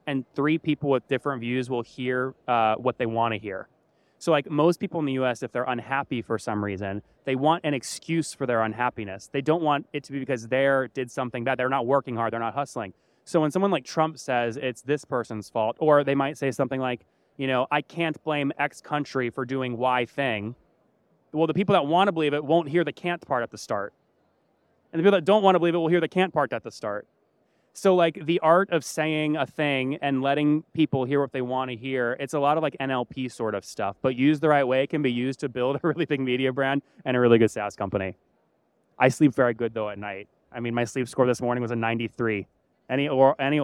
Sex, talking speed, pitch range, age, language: male, 240 wpm, 125-150 Hz, 20-39, English